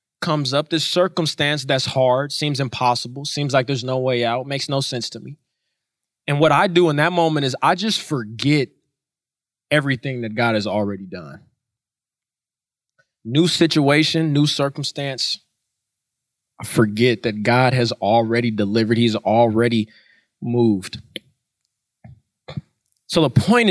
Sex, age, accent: male, 20-39, American